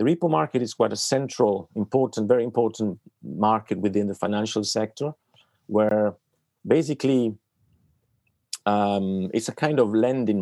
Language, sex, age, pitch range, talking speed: English, male, 40-59, 100-115 Hz, 130 wpm